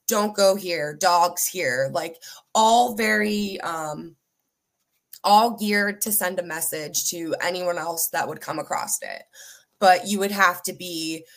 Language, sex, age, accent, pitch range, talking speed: English, female, 20-39, American, 175-215 Hz, 155 wpm